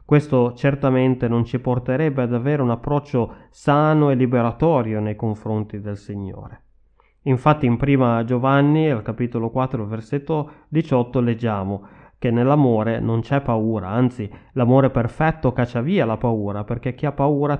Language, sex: Italian, male